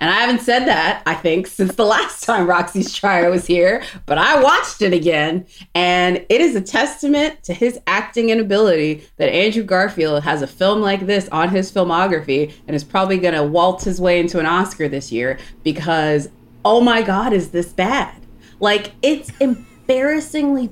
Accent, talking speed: American, 180 wpm